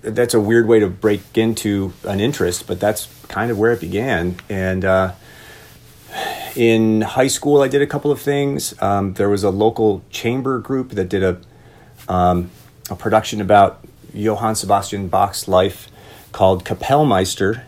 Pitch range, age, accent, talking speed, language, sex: 95-115 Hz, 40-59, American, 160 wpm, English, male